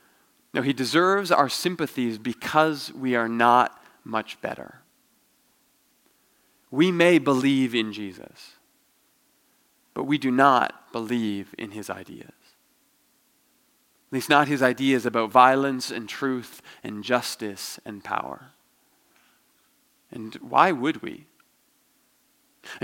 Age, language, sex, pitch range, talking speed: 30-49, English, male, 125-170 Hz, 110 wpm